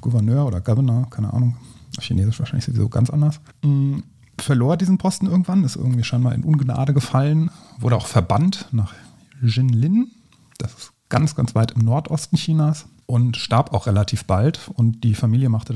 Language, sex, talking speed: German, male, 165 wpm